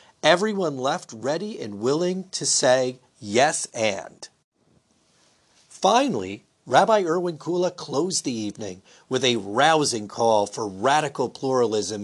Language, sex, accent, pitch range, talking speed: English, male, American, 125-205 Hz, 115 wpm